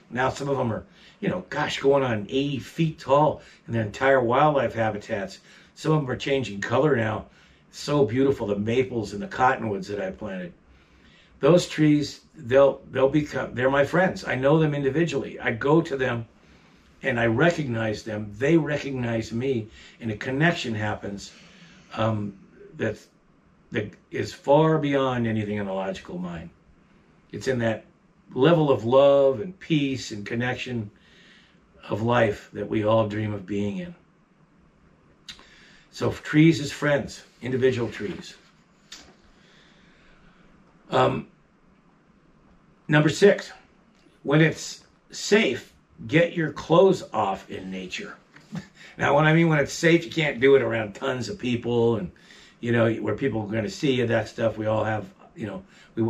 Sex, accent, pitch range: male, American, 110-145 Hz